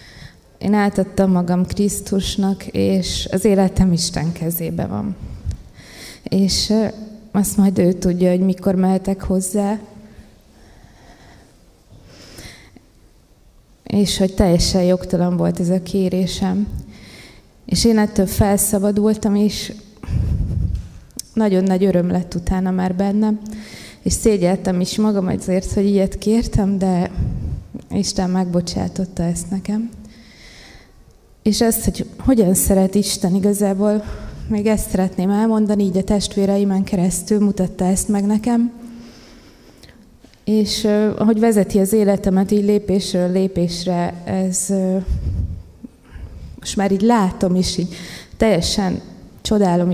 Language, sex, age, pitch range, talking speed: Hungarian, female, 20-39, 185-210 Hz, 105 wpm